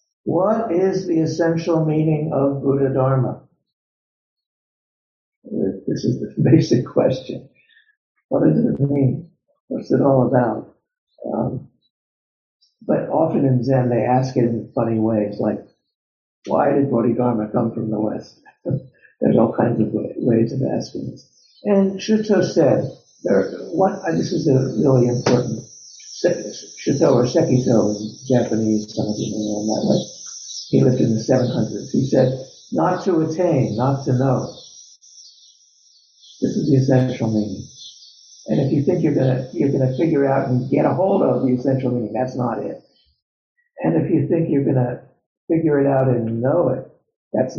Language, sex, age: English, male, 60-79